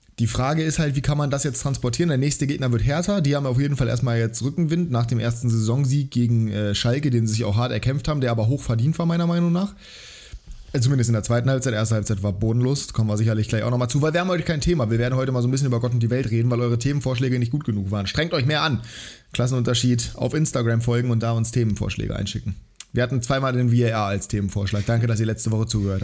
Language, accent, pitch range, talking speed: German, German, 115-140 Hz, 260 wpm